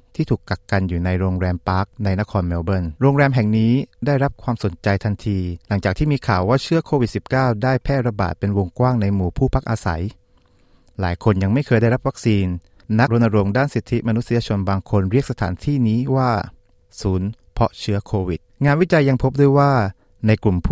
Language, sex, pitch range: Thai, male, 95-130 Hz